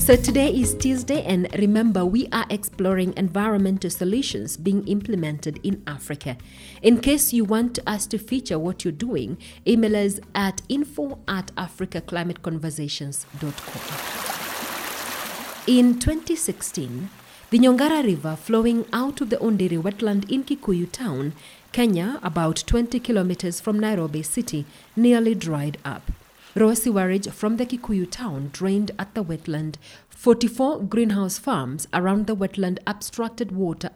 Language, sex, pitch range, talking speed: English, female, 165-230 Hz, 125 wpm